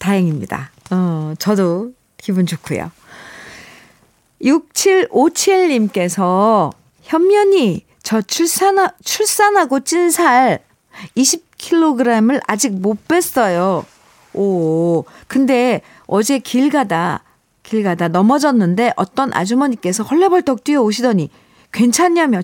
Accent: native